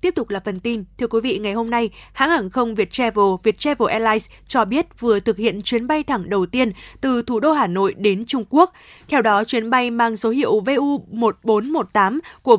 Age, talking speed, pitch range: 20-39, 210 wpm, 220-280 Hz